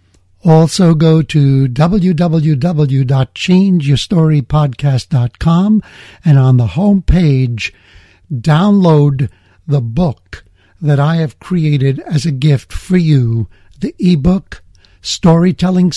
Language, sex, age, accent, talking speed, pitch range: English, male, 60-79, American, 90 wpm, 125-180 Hz